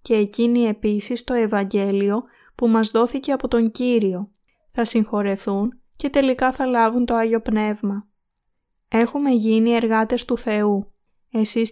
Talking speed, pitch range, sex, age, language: 135 wpm, 215-245 Hz, female, 20-39, Greek